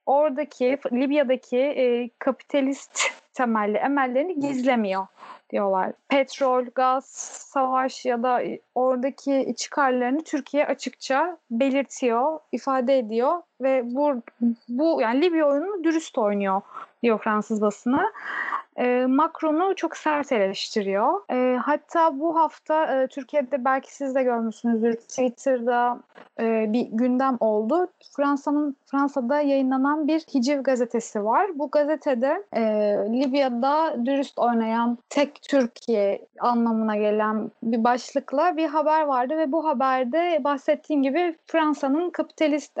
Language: Turkish